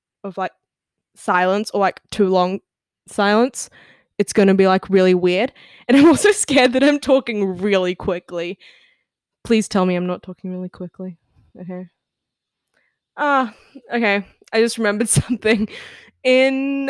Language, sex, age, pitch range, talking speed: English, female, 10-29, 190-265 Hz, 140 wpm